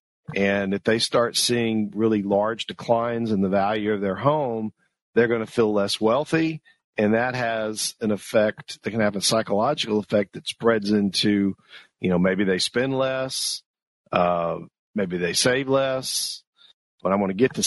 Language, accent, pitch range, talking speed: English, American, 100-120 Hz, 175 wpm